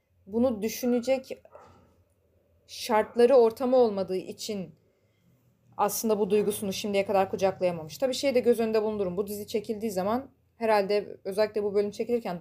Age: 30-49